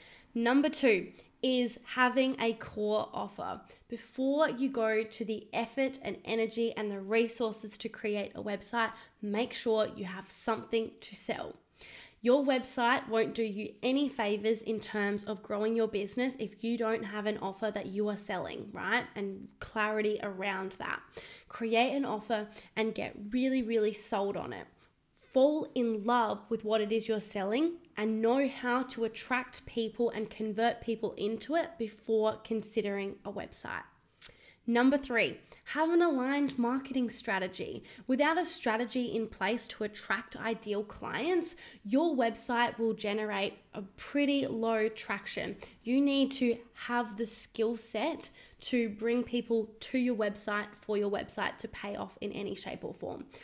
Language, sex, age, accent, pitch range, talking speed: English, female, 10-29, Australian, 215-245 Hz, 155 wpm